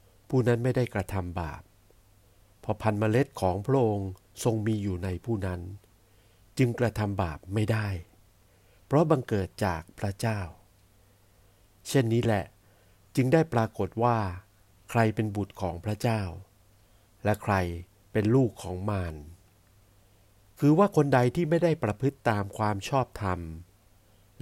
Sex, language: male, Thai